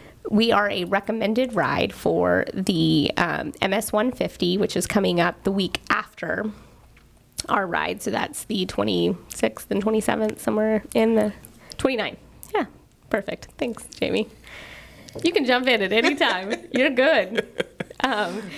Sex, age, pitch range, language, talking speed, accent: female, 20-39, 185-230 Hz, English, 135 wpm, American